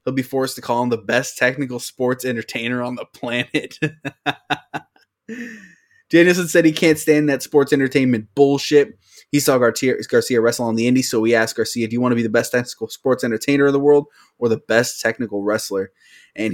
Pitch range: 115-155 Hz